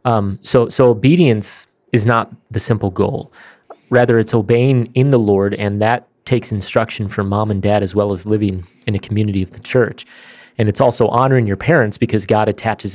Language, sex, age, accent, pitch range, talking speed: English, male, 30-49, American, 100-120 Hz, 195 wpm